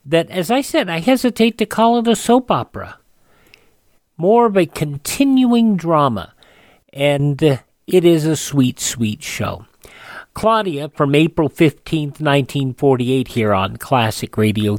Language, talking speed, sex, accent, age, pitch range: English, 135 wpm, male, American, 50-69, 130-190 Hz